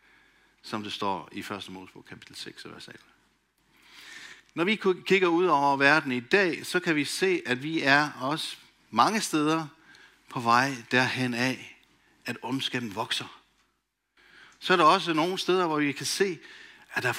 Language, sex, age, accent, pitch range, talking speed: Danish, male, 60-79, native, 125-175 Hz, 170 wpm